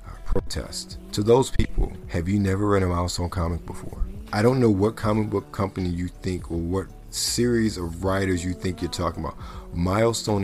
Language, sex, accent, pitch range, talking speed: English, male, American, 85-105 Hz, 180 wpm